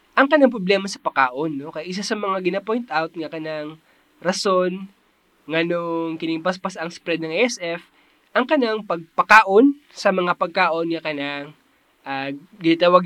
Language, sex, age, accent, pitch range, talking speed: Filipino, male, 20-39, native, 165-225 Hz, 150 wpm